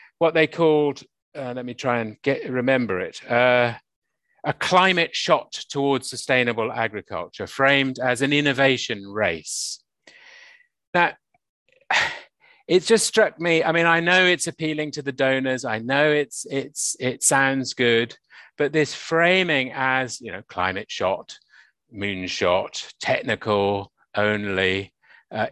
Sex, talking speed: male, 130 wpm